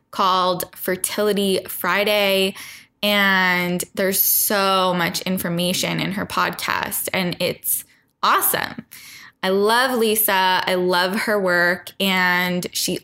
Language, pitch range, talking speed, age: English, 180-210 Hz, 105 wpm, 10-29